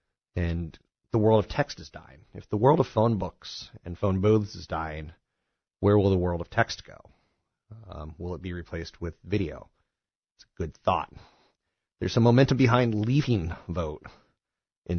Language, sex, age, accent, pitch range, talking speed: English, male, 30-49, American, 85-105 Hz, 170 wpm